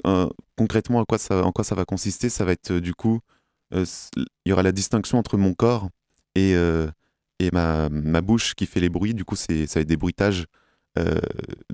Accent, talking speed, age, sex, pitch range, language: French, 225 wpm, 20-39, male, 85-100 Hz, French